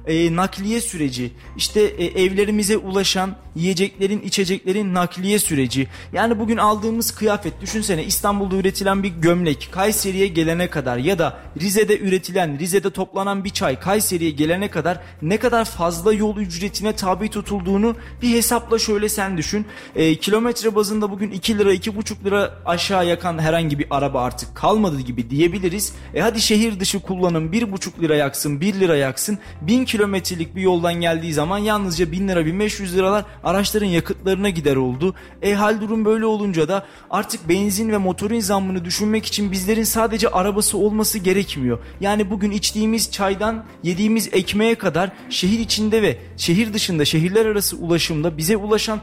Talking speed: 150 wpm